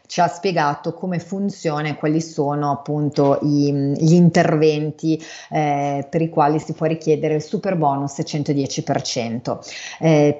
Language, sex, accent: Italian, female, native